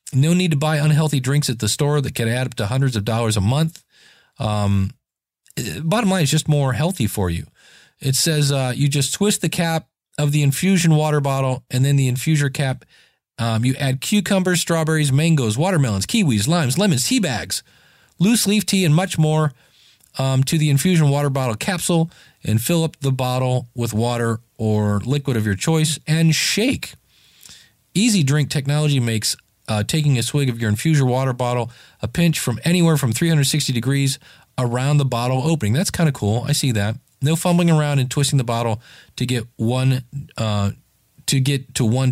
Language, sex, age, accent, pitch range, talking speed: English, male, 40-59, American, 120-155 Hz, 185 wpm